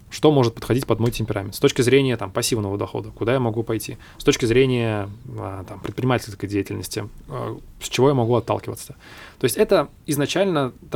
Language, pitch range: Russian, 105-130 Hz